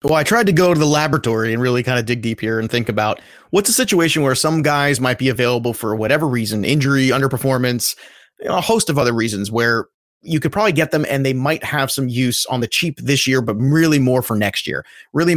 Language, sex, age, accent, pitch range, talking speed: English, male, 30-49, American, 125-155 Hz, 245 wpm